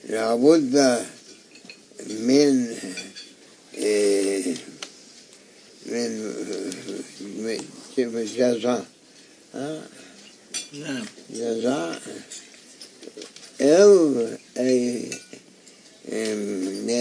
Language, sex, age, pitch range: English, male, 60-79, 120-140 Hz